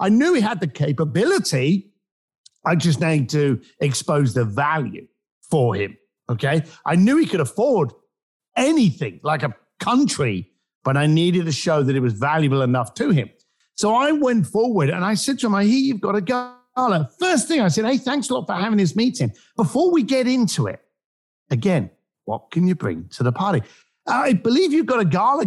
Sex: male